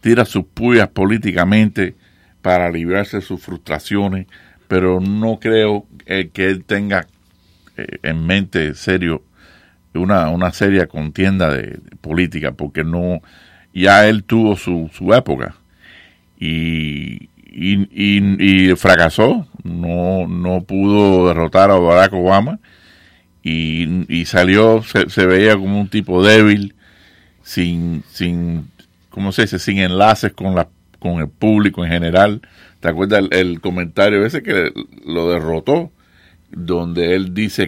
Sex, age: male, 50-69